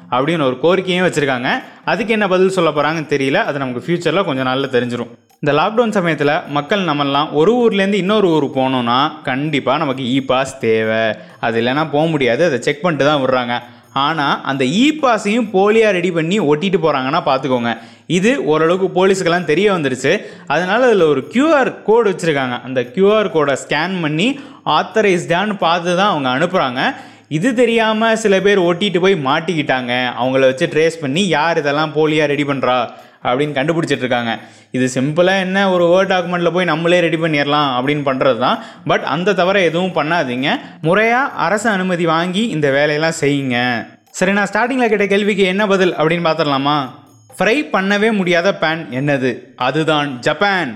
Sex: male